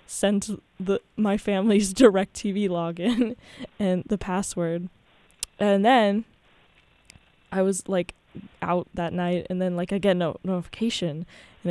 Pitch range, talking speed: 180-205 Hz, 135 wpm